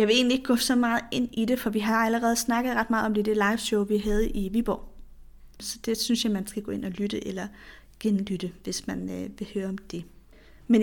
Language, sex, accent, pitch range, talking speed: Danish, female, native, 195-230 Hz, 240 wpm